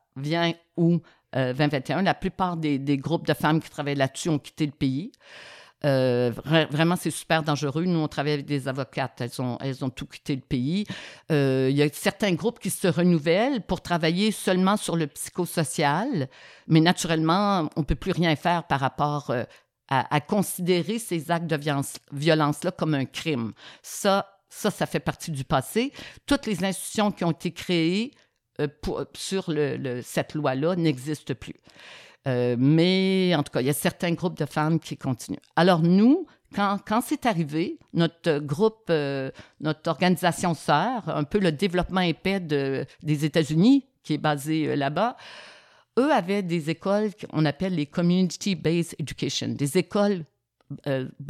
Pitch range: 145-185 Hz